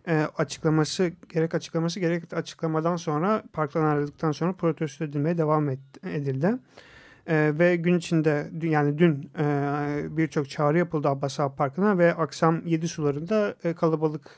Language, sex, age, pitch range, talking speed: Turkish, male, 40-59, 145-170 Hz, 140 wpm